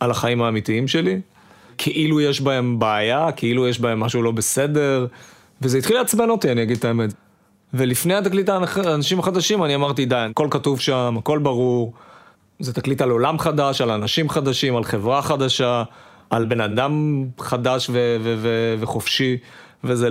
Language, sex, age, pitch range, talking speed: Hebrew, male, 30-49, 115-130 Hz, 165 wpm